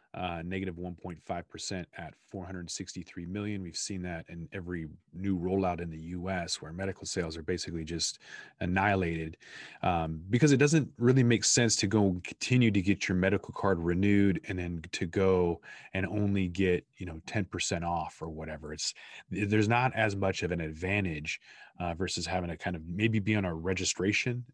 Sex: male